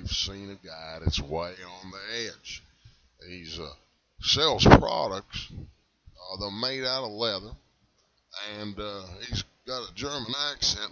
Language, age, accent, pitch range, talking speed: English, 30-49, American, 90-110 Hz, 135 wpm